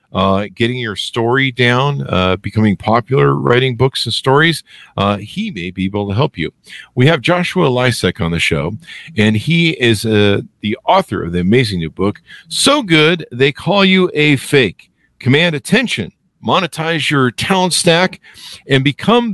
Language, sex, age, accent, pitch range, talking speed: English, male, 50-69, American, 100-155 Hz, 165 wpm